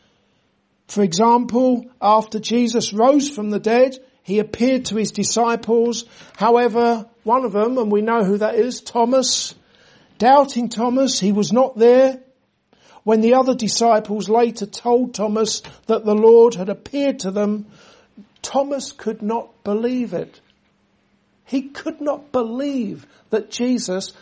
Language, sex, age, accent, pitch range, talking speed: English, male, 60-79, British, 210-250 Hz, 135 wpm